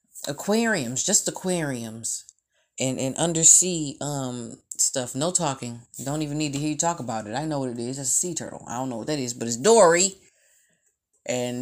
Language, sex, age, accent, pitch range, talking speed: English, female, 20-39, American, 130-180 Hz, 200 wpm